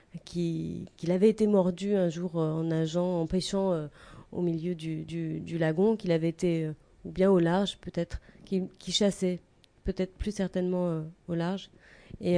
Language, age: French, 30-49